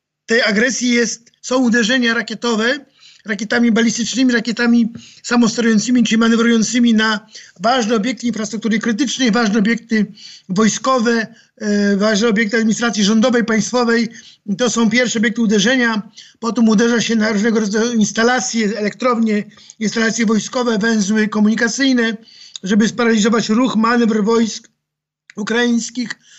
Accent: native